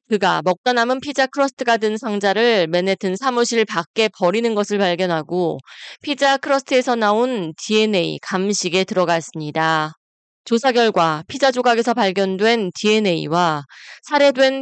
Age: 20-39